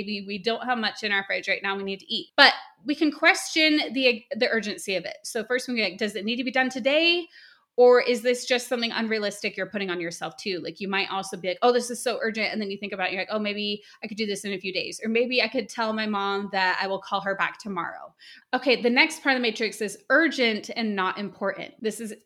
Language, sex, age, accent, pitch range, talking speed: English, female, 20-39, American, 205-255 Hz, 275 wpm